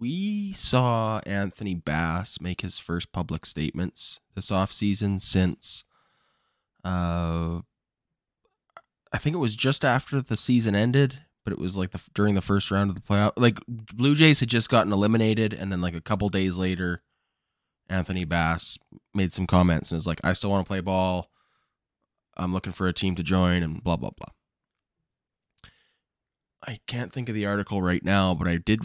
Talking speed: 175 wpm